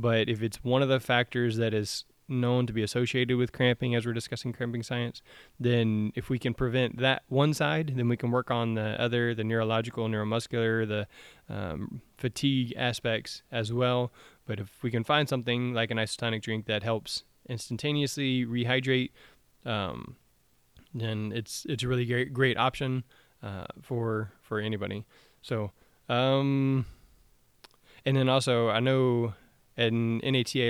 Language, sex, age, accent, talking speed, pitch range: English, male, 20-39, American, 155 wpm, 110-125 Hz